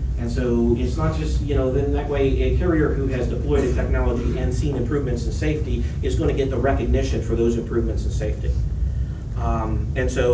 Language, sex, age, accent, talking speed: English, male, 40-59, American, 210 wpm